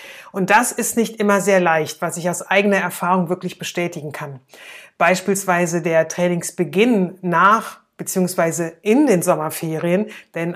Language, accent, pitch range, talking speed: German, German, 175-205 Hz, 135 wpm